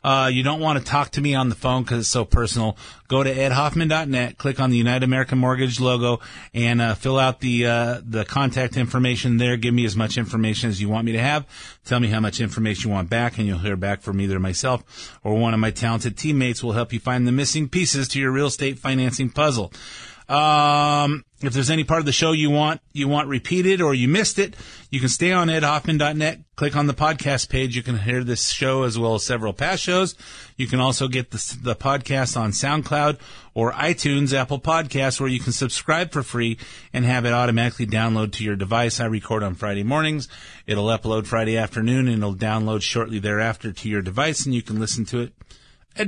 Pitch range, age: 115-145 Hz, 30-49